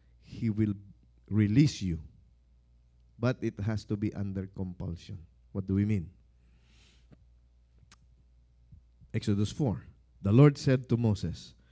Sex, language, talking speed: male, English, 115 wpm